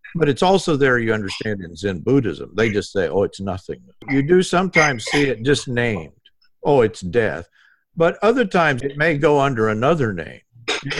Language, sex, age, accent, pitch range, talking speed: English, male, 50-69, American, 105-150 Hz, 190 wpm